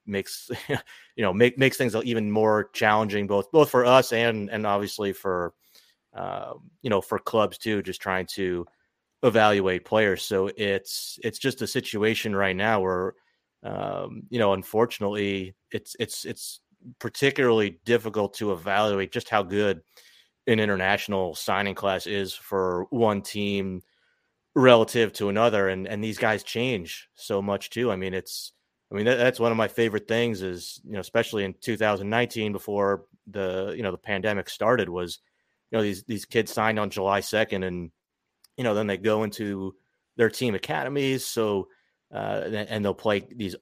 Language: English